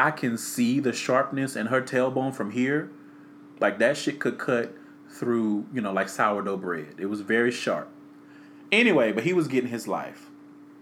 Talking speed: 175 wpm